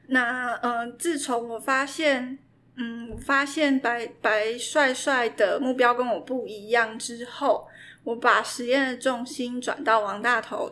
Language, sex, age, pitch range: Chinese, female, 20-39, 225-270 Hz